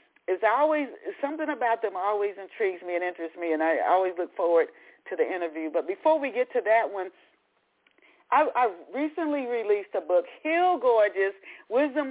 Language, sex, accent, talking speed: English, female, American, 175 wpm